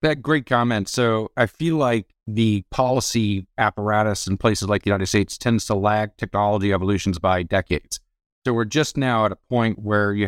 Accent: American